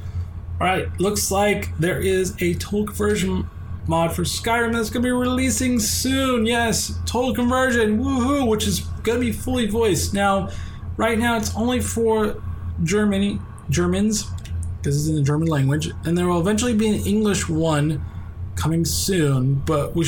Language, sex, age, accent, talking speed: English, male, 20-39, American, 160 wpm